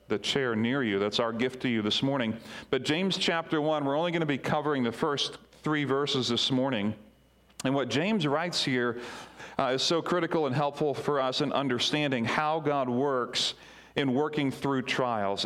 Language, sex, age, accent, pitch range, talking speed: English, male, 40-59, American, 115-150 Hz, 190 wpm